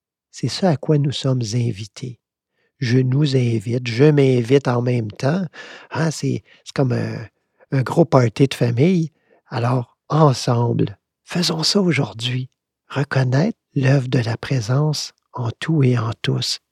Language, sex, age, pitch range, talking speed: French, male, 50-69, 120-155 Hz, 140 wpm